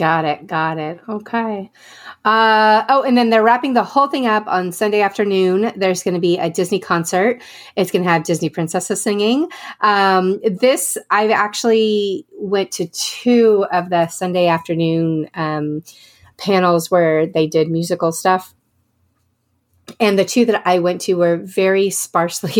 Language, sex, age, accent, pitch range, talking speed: English, female, 30-49, American, 165-210 Hz, 160 wpm